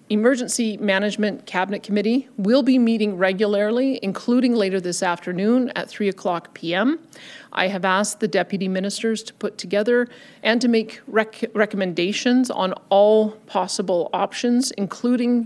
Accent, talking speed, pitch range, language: American, 130 wpm, 190-225 Hz, English